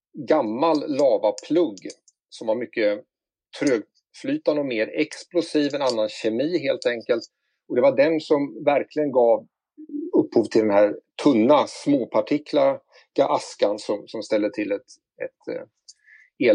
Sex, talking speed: male, 125 wpm